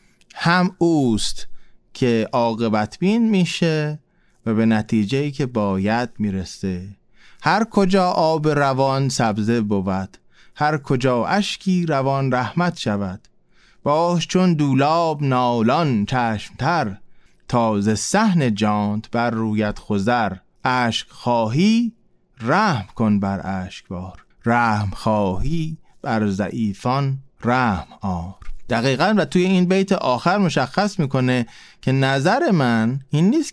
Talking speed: 105 wpm